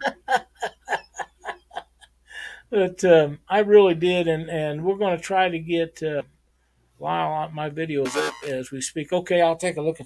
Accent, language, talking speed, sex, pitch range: American, English, 165 wpm, male, 140-195 Hz